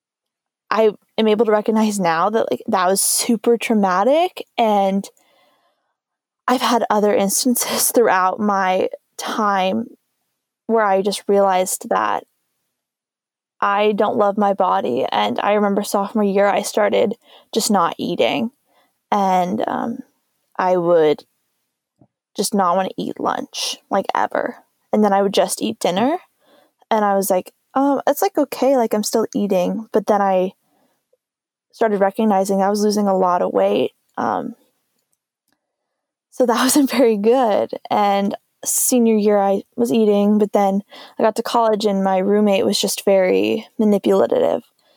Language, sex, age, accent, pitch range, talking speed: English, female, 20-39, American, 200-240 Hz, 145 wpm